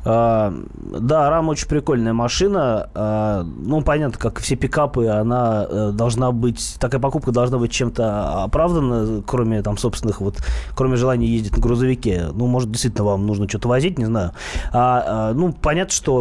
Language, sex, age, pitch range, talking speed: Russian, male, 20-39, 105-130 Hz, 160 wpm